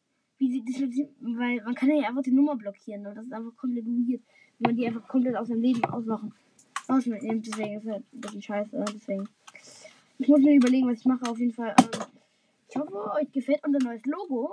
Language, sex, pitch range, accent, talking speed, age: German, female, 225-270 Hz, German, 225 wpm, 20-39